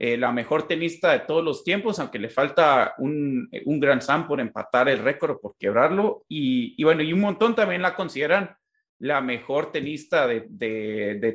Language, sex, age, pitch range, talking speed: Spanish, male, 30-49, 140-215 Hz, 195 wpm